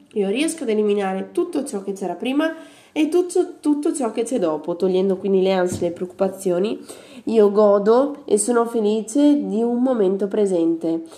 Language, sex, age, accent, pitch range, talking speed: Italian, female, 20-39, native, 190-230 Hz, 170 wpm